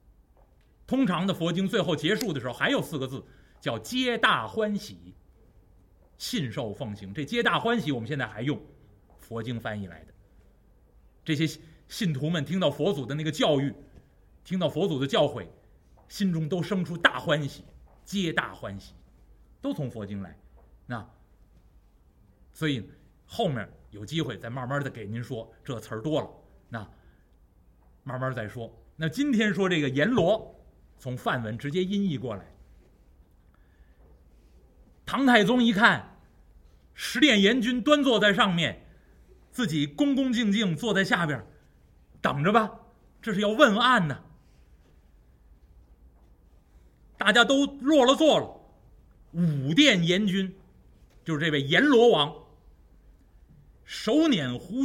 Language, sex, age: Chinese, male, 30-49